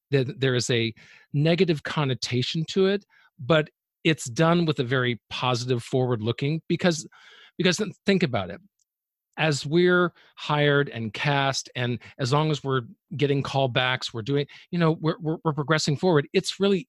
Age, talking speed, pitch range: 40-59, 155 wpm, 125-155 Hz